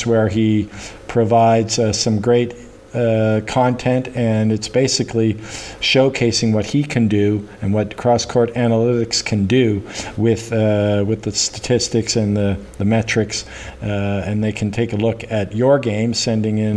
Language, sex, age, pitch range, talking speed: English, male, 50-69, 110-120 Hz, 155 wpm